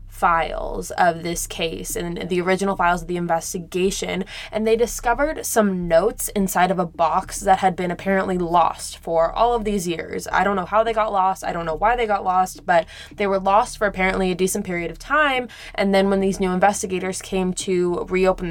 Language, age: English, 20-39